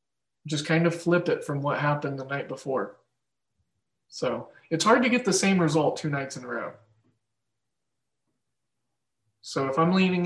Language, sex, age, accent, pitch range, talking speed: English, male, 20-39, American, 140-165 Hz, 165 wpm